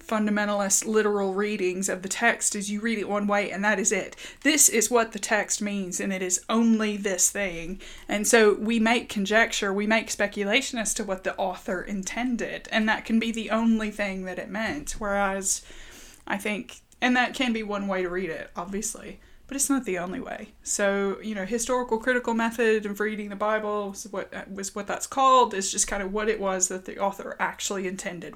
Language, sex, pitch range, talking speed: English, female, 195-230 Hz, 210 wpm